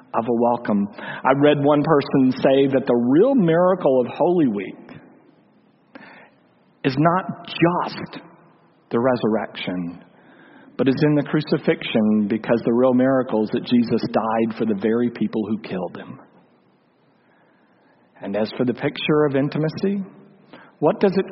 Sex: male